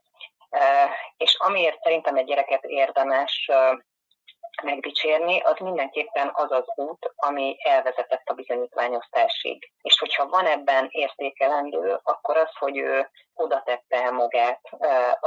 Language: Hungarian